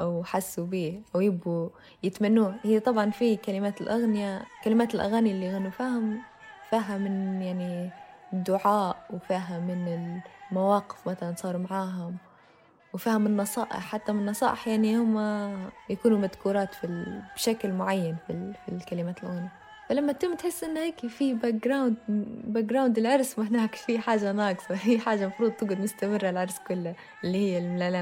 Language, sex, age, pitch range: Arabic, female, 20-39, 190-240 Hz